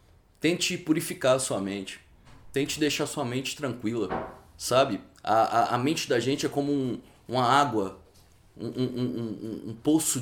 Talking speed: 160 wpm